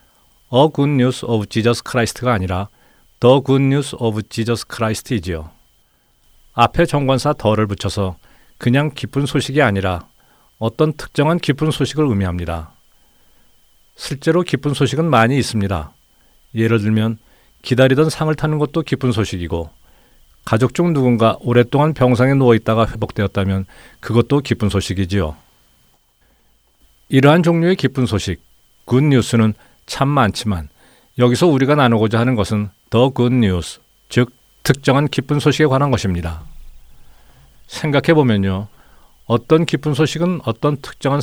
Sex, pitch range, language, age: male, 100-140 Hz, Korean, 40-59